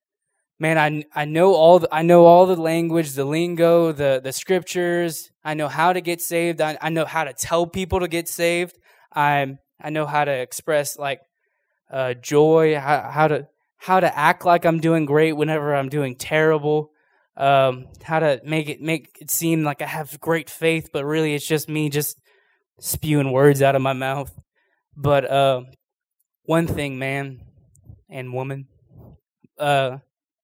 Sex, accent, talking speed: male, American, 175 wpm